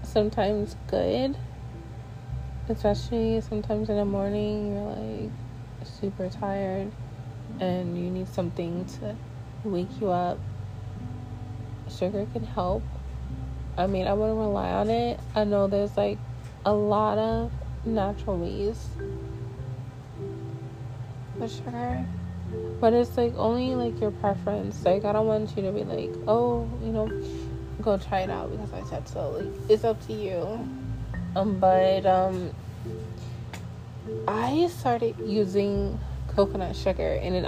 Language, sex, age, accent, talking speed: English, female, 20-39, American, 130 wpm